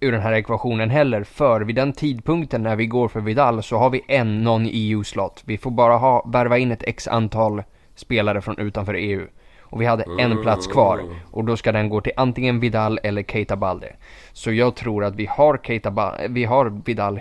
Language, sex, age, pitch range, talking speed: Swedish, male, 20-39, 105-125 Hz, 205 wpm